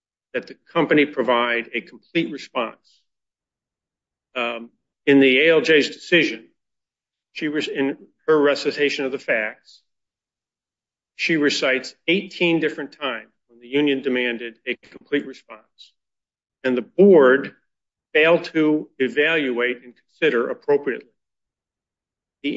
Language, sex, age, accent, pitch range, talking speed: English, male, 40-59, American, 120-145 Hz, 110 wpm